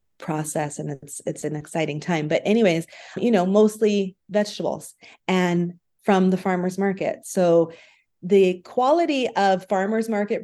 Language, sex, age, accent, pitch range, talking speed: English, female, 30-49, American, 170-210 Hz, 140 wpm